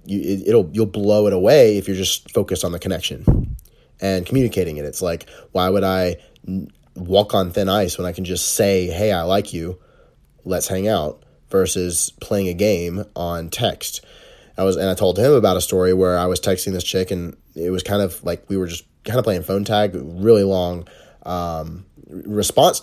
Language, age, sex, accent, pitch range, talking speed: English, 30-49, male, American, 90-100 Hz, 200 wpm